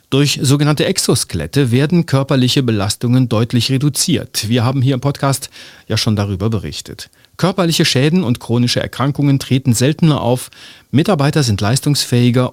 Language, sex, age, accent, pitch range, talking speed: German, male, 40-59, German, 110-145 Hz, 135 wpm